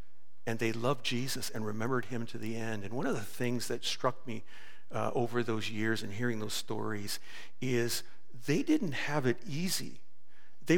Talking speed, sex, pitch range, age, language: 185 wpm, male, 115-140 Hz, 50-69, English